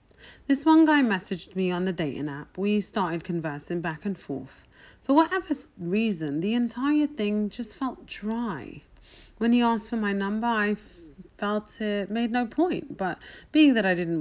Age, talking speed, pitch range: 30-49, 175 wpm, 165-235 Hz